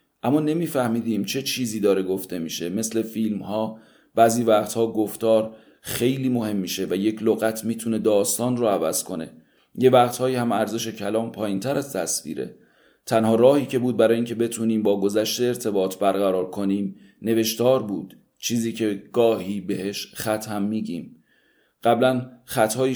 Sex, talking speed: male, 150 wpm